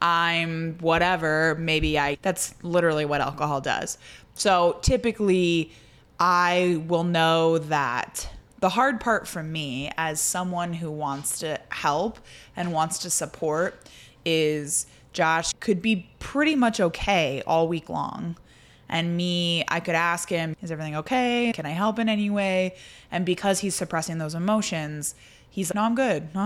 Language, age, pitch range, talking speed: English, 20-39, 155-190 Hz, 150 wpm